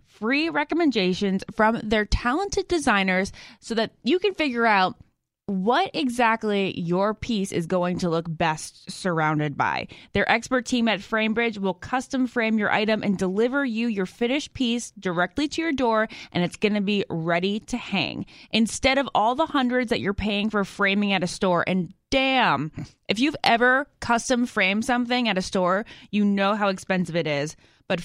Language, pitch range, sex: English, 180-235 Hz, female